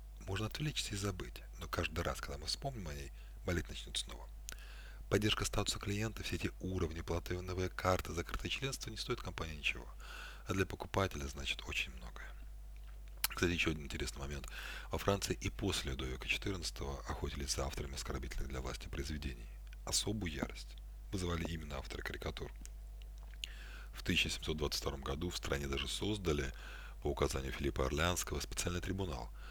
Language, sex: Russian, male